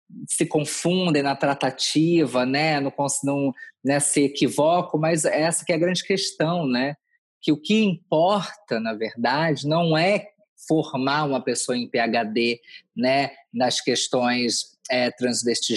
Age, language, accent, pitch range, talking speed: 20-39, Portuguese, Brazilian, 130-180 Hz, 145 wpm